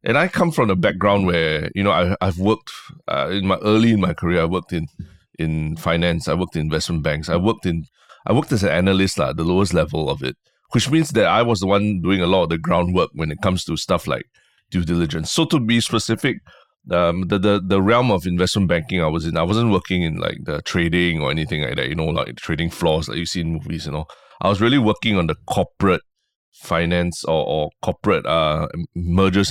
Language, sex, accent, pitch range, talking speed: English, male, Malaysian, 85-100 Hz, 240 wpm